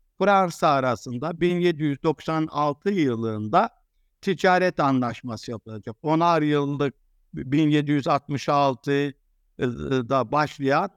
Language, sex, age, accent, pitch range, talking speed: Turkish, male, 60-79, native, 135-175 Hz, 60 wpm